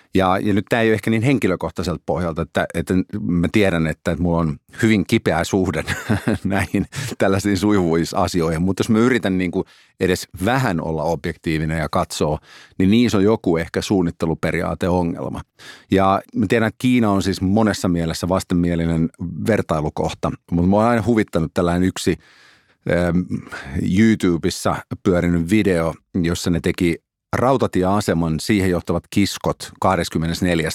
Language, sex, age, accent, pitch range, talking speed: Finnish, male, 50-69, native, 80-100 Hz, 140 wpm